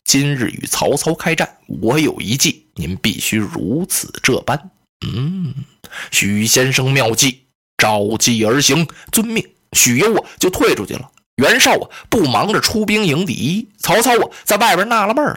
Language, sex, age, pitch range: Chinese, male, 20-39, 150-245 Hz